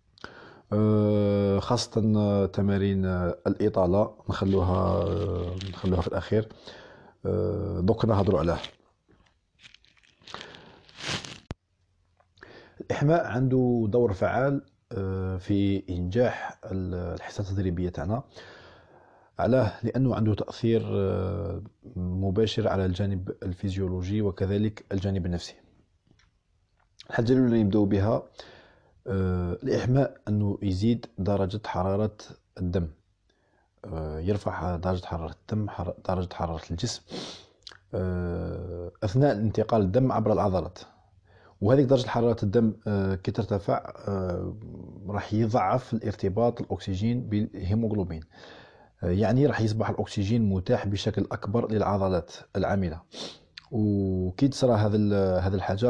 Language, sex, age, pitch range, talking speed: Arabic, male, 40-59, 95-110 Hz, 80 wpm